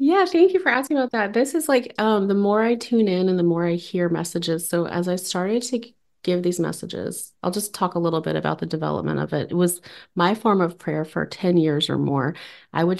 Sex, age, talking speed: female, 30-49, 250 wpm